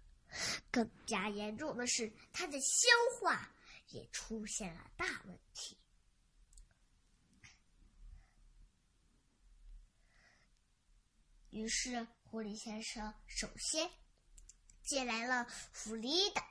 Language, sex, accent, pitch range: Chinese, male, native, 220-345 Hz